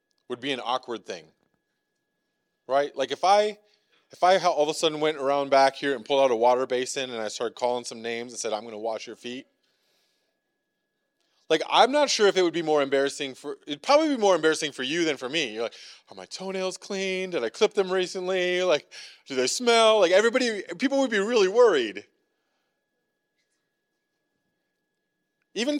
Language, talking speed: English, 195 wpm